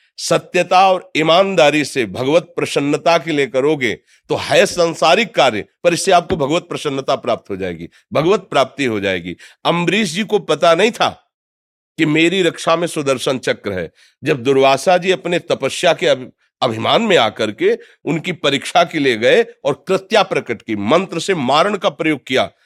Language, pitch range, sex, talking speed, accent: Hindi, 130-180 Hz, male, 170 wpm, native